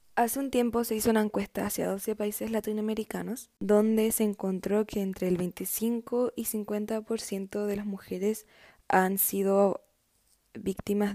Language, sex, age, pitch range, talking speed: Spanish, female, 10-29, 190-220 Hz, 140 wpm